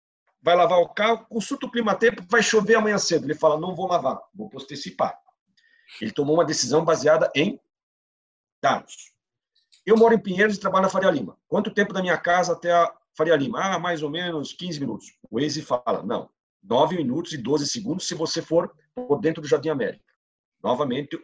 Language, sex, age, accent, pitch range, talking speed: Portuguese, male, 50-69, Brazilian, 155-225 Hz, 190 wpm